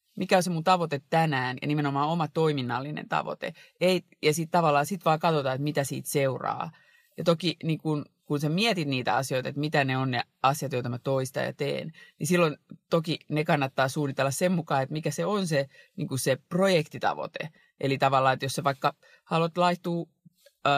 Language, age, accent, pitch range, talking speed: Finnish, 30-49, native, 135-170 Hz, 190 wpm